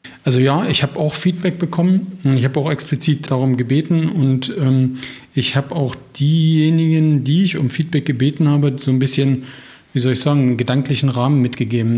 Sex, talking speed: male, 185 wpm